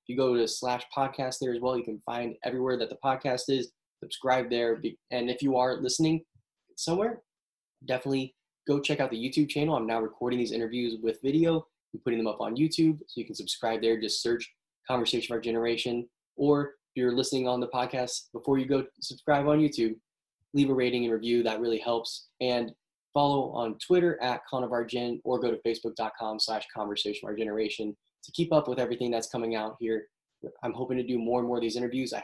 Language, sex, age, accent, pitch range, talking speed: English, male, 10-29, American, 115-135 Hz, 210 wpm